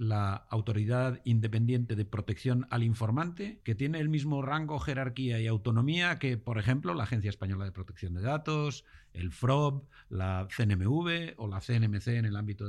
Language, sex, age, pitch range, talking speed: Spanish, male, 50-69, 100-140 Hz, 165 wpm